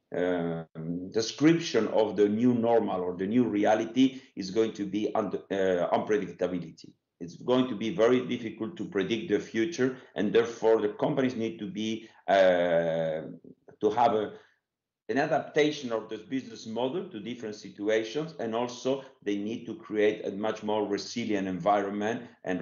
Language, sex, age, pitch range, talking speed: English, male, 50-69, 105-130 Hz, 155 wpm